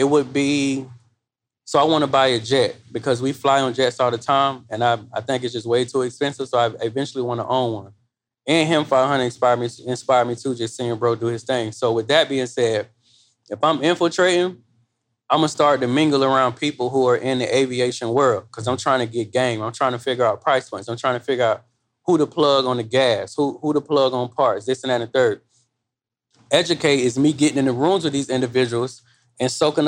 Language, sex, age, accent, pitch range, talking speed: English, male, 20-39, American, 120-150 Hz, 235 wpm